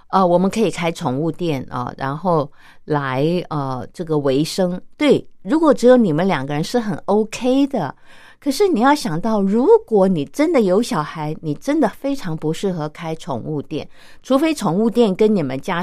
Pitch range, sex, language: 150-220 Hz, female, Japanese